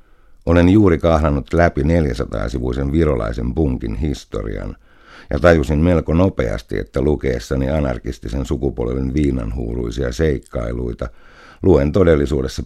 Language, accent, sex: Finnish, native, male